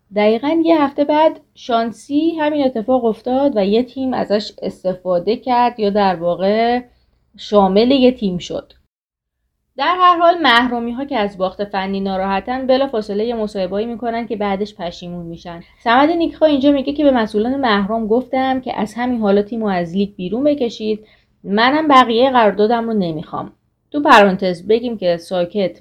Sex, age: female, 30-49